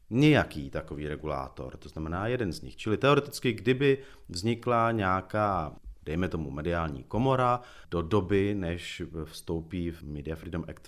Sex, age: male, 40-59